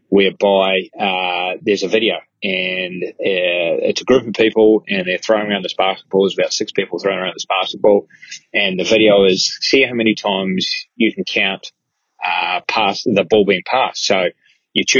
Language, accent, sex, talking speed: English, Australian, male, 180 wpm